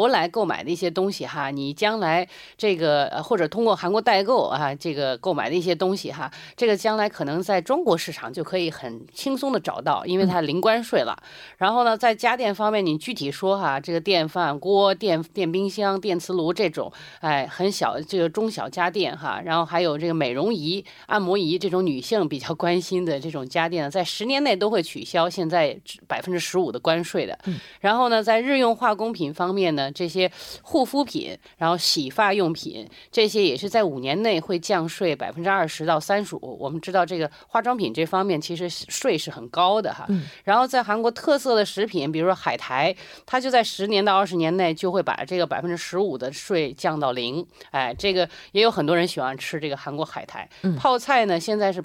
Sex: female